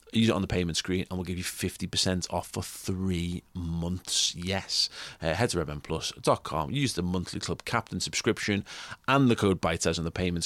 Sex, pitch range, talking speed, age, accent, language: male, 85-100 Hz, 190 wpm, 30-49, British, English